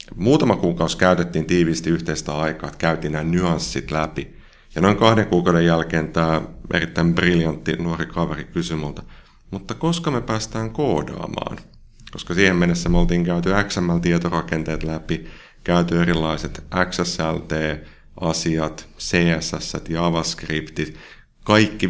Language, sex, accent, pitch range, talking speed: Finnish, male, native, 80-90 Hz, 115 wpm